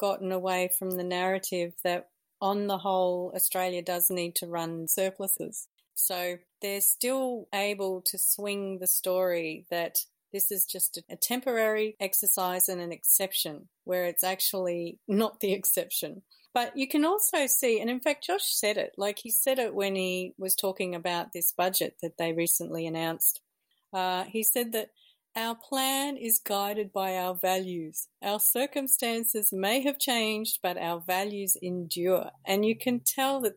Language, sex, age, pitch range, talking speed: English, female, 40-59, 180-210 Hz, 160 wpm